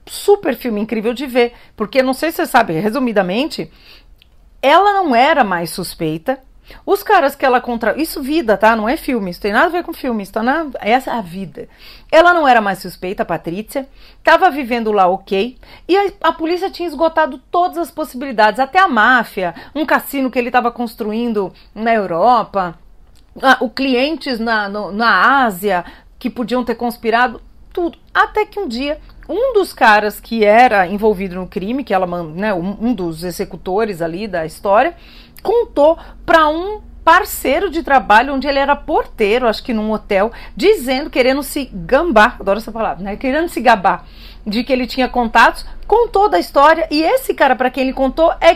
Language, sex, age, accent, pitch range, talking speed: Portuguese, female, 40-59, Brazilian, 210-315 Hz, 180 wpm